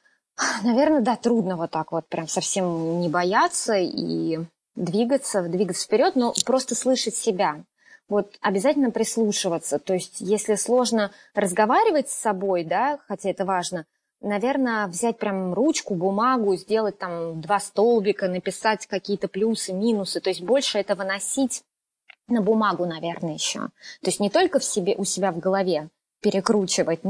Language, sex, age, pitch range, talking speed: Russian, female, 20-39, 185-235 Hz, 145 wpm